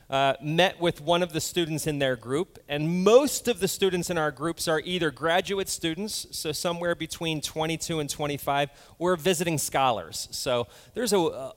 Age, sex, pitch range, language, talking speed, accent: 30-49, male, 140-180 Hz, English, 175 wpm, American